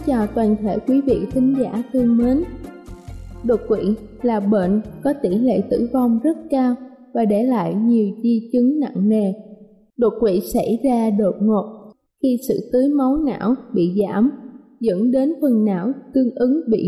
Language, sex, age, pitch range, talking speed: Vietnamese, female, 20-39, 210-260 Hz, 170 wpm